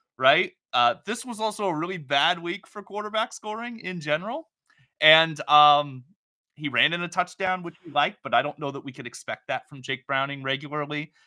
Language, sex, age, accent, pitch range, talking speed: English, male, 30-49, American, 125-170 Hz, 195 wpm